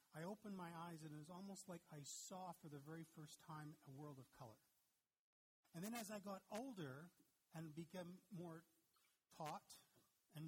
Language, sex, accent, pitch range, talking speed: English, male, American, 150-180 Hz, 180 wpm